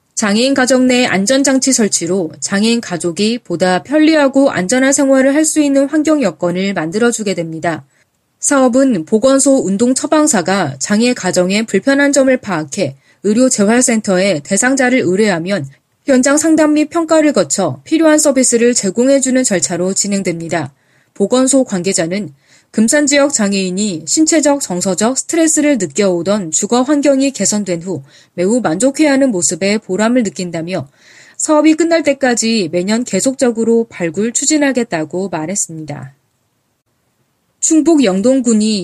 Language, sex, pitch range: Korean, female, 180-265 Hz